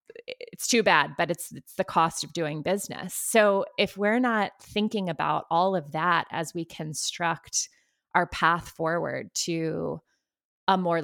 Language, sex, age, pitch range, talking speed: English, female, 20-39, 160-190 Hz, 160 wpm